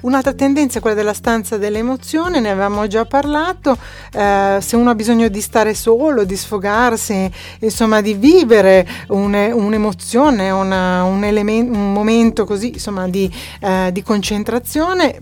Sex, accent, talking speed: female, native, 150 wpm